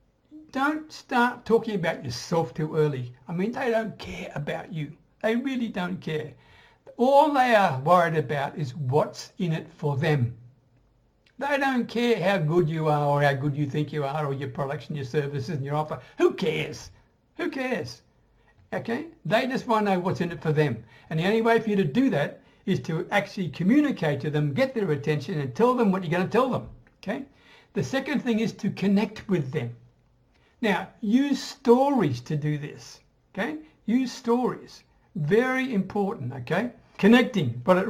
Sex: male